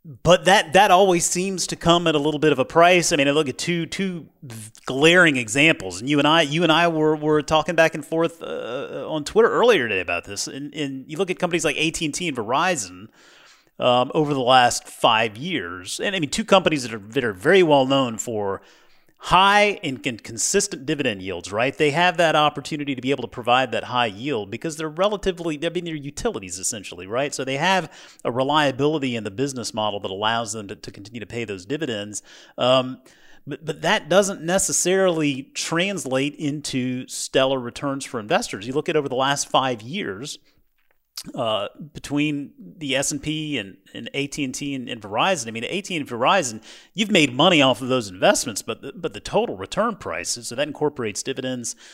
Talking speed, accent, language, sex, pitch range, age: 200 wpm, American, English, male, 130-170 Hz, 30-49